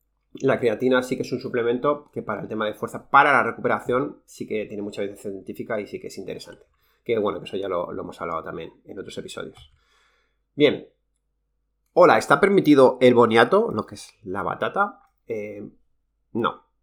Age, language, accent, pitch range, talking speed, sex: 30-49, Spanish, Spanish, 95-125 Hz, 185 wpm, male